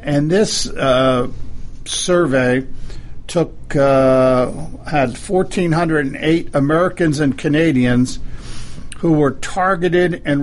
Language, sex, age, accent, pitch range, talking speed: English, male, 50-69, American, 135-155 Hz, 85 wpm